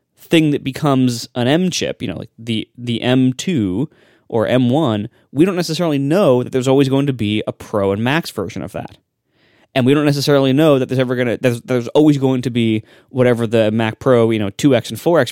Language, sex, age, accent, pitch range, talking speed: English, male, 20-39, American, 110-140 Hz, 220 wpm